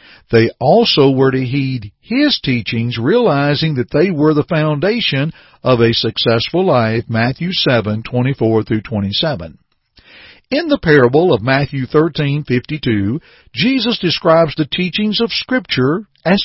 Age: 60-79